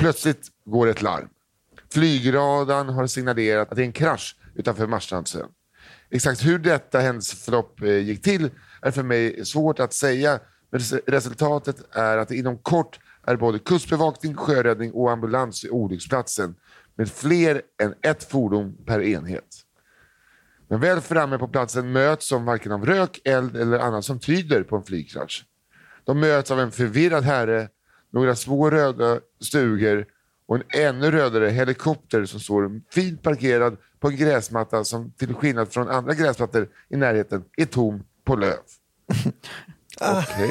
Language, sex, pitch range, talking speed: Swedish, male, 115-155 Hz, 145 wpm